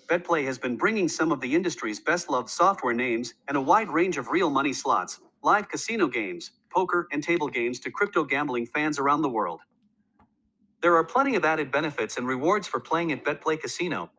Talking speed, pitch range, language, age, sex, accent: 190 wpm, 145-220 Hz, English, 40-59, male, American